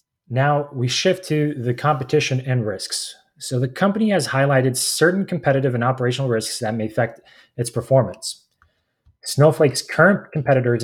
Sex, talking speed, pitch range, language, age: male, 145 wpm, 120-145 Hz, English, 20-39